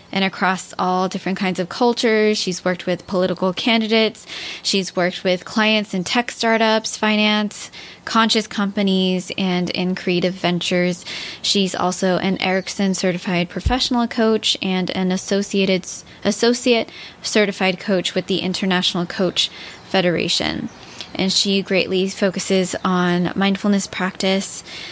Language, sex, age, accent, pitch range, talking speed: English, female, 20-39, American, 180-205 Hz, 125 wpm